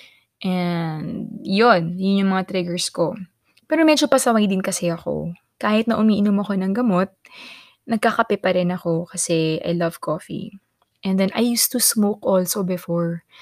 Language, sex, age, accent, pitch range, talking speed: Filipino, female, 20-39, native, 180-230 Hz, 155 wpm